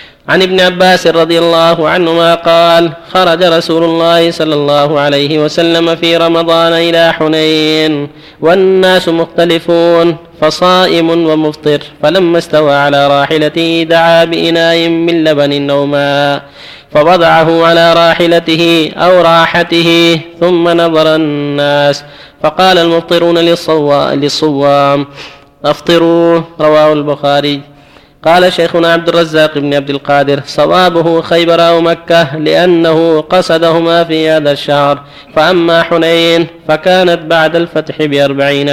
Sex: male